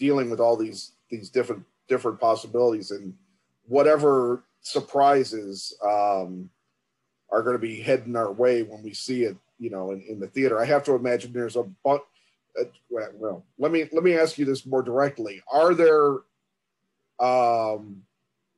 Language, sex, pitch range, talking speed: English, male, 115-140 Hz, 160 wpm